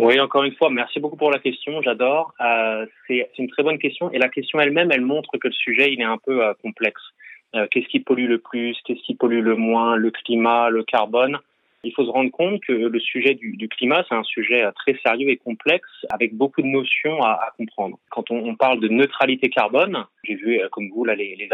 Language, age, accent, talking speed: French, 20-39, French, 240 wpm